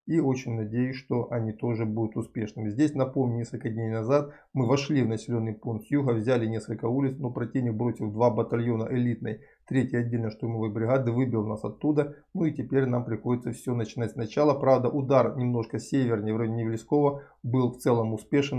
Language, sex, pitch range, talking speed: Russian, male, 115-140 Hz, 180 wpm